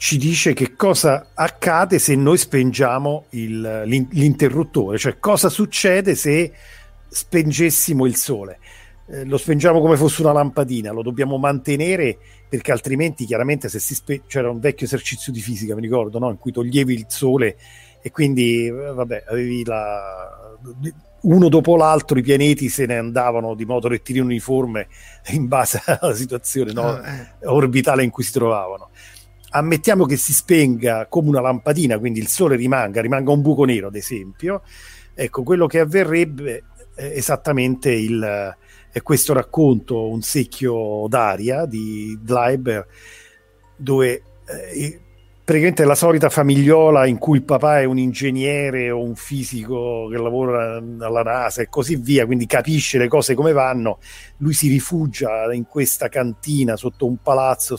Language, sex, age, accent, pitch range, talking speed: Italian, male, 40-59, native, 115-145 Hz, 150 wpm